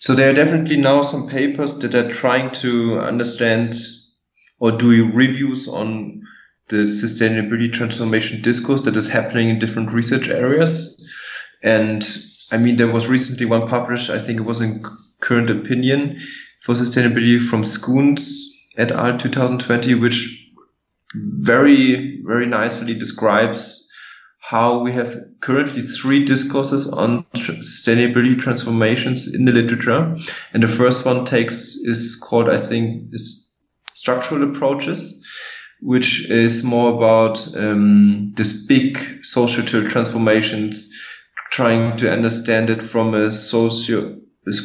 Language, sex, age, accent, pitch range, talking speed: English, male, 20-39, German, 110-125 Hz, 130 wpm